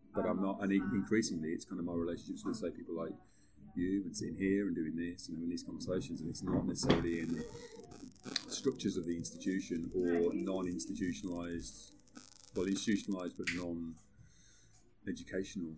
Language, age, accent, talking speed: English, 30-49, British, 150 wpm